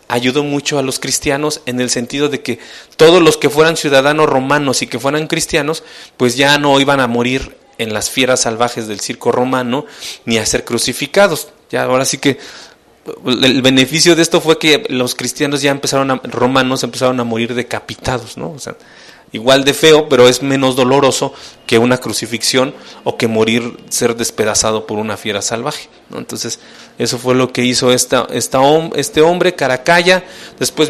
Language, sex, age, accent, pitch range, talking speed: English, male, 30-49, Mexican, 125-155 Hz, 180 wpm